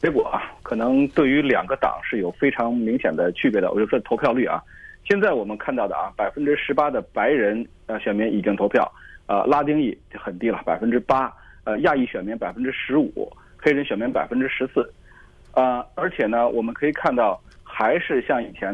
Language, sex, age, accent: Chinese, male, 30-49, native